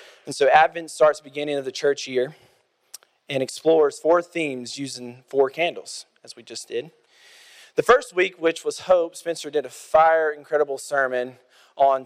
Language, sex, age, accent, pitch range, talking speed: English, male, 20-39, American, 125-160 Hz, 170 wpm